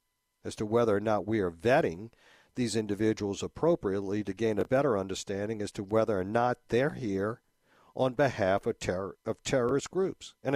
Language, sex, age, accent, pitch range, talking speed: English, male, 50-69, American, 100-130 Hz, 170 wpm